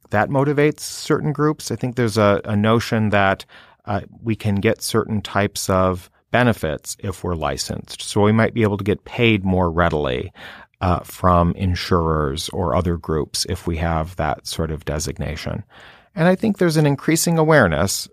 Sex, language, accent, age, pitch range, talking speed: male, English, American, 40-59, 90-115 Hz, 170 wpm